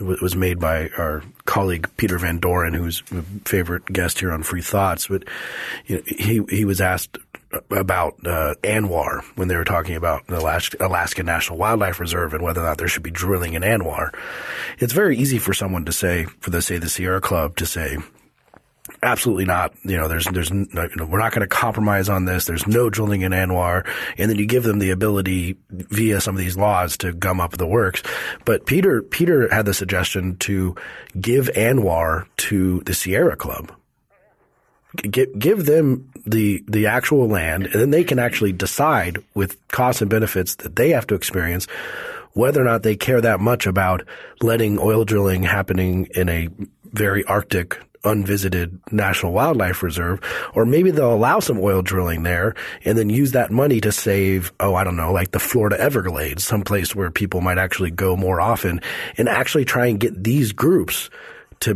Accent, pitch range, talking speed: American, 90-110 Hz, 190 wpm